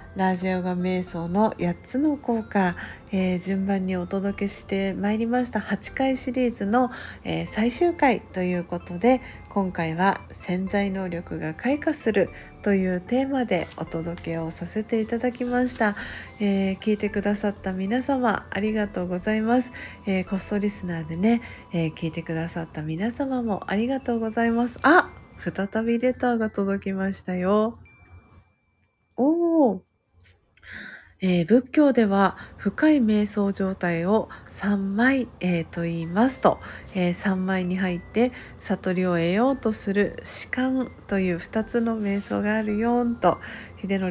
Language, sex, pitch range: Japanese, female, 185-245 Hz